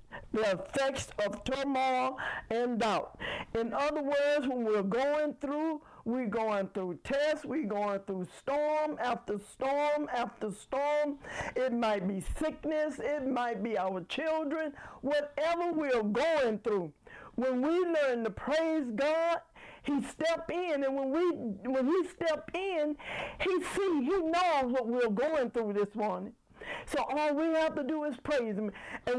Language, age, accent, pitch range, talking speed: English, 60-79, American, 215-300 Hz, 155 wpm